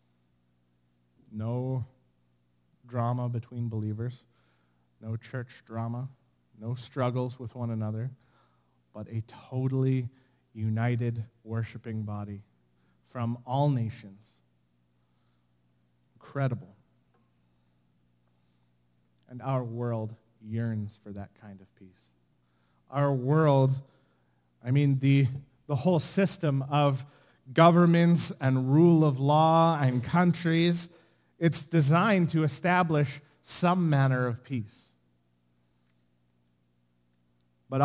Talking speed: 90 wpm